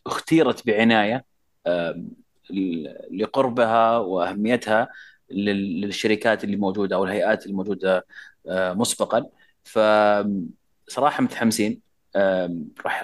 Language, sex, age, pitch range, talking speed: Arabic, male, 30-49, 95-120 Hz, 65 wpm